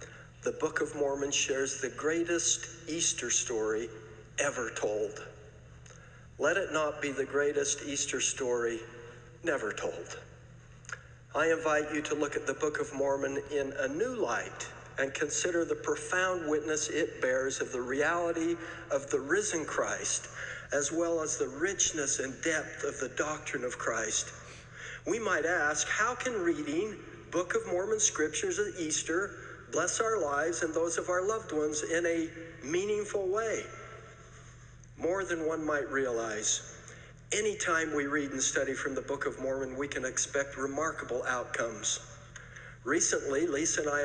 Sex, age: male, 60-79